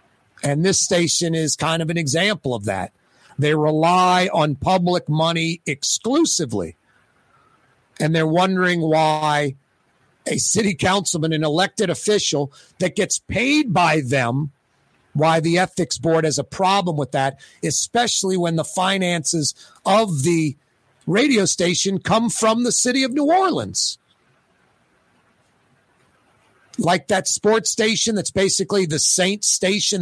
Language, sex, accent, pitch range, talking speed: English, male, American, 145-195 Hz, 130 wpm